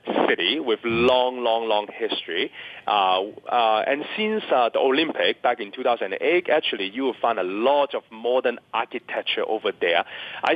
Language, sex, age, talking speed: English, male, 30-49, 160 wpm